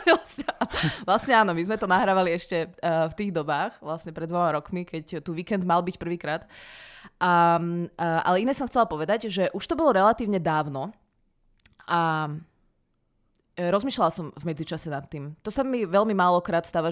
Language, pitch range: Czech, 165-210 Hz